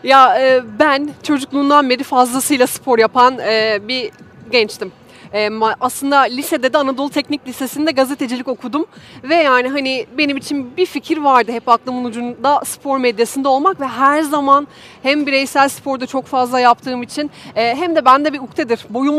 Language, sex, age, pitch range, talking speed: Turkish, female, 30-49, 240-285 Hz, 145 wpm